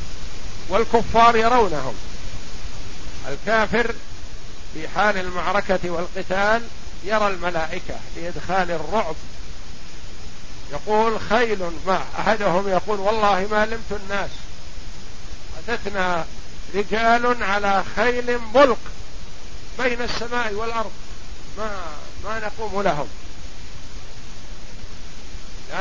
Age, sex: 50-69, male